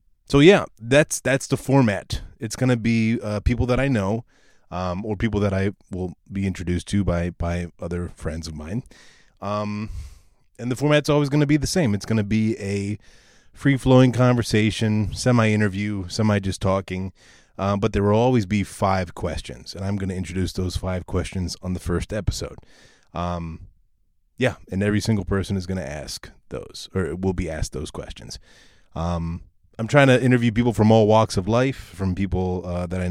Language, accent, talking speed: English, American, 190 wpm